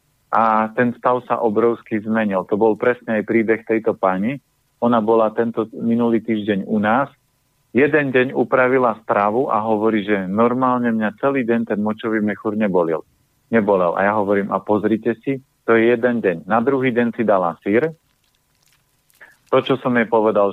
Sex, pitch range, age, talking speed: male, 105-125 Hz, 40-59, 165 wpm